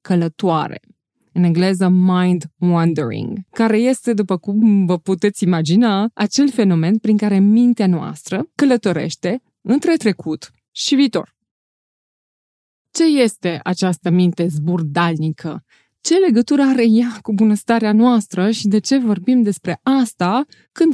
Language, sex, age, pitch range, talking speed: Romanian, female, 20-39, 180-240 Hz, 120 wpm